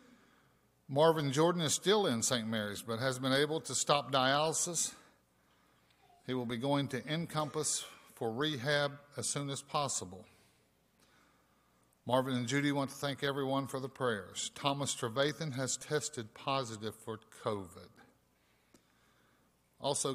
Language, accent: English, American